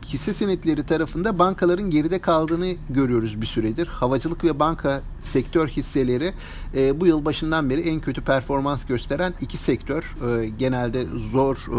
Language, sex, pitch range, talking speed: Turkish, male, 120-160 Hz, 145 wpm